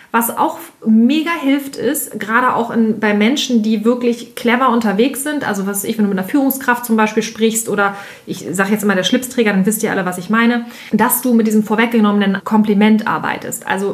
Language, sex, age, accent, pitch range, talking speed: German, female, 30-49, German, 210-245 Hz, 205 wpm